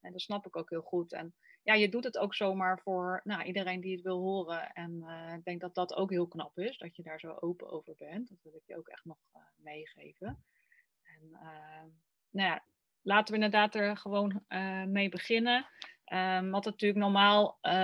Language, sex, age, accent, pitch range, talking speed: Dutch, female, 30-49, Dutch, 170-200 Hz, 215 wpm